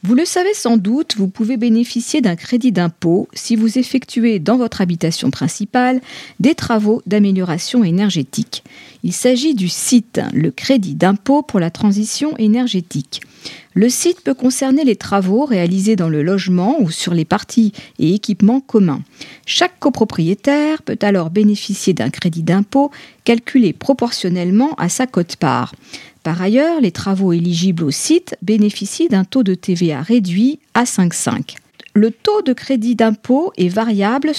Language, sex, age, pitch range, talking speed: French, female, 40-59, 180-250 Hz, 150 wpm